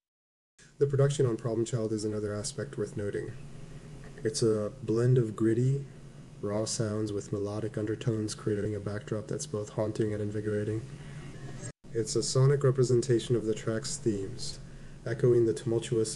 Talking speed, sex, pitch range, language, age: 145 wpm, male, 105-140 Hz, English, 30-49